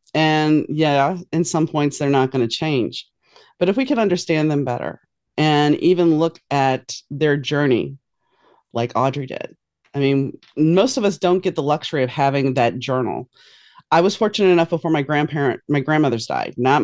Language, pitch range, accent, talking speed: English, 135-190 Hz, American, 180 wpm